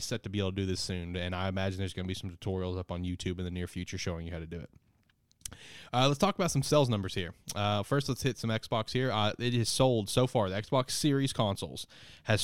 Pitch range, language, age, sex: 100-125 Hz, English, 20-39, male